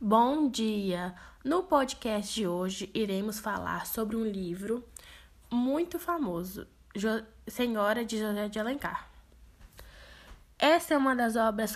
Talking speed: 115 wpm